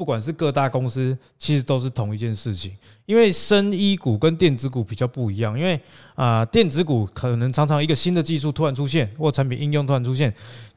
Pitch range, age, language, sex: 120-165 Hz, 20-39, Chinese, male